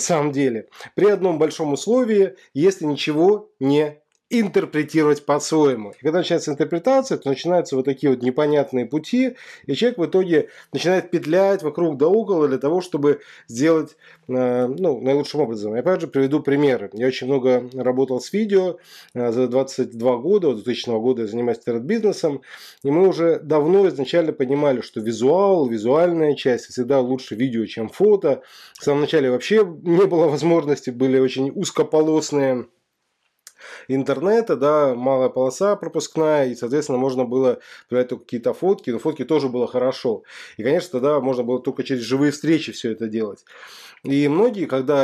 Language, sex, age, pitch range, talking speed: Russian, male, 20-39, 130-170 Hz, 155 wpm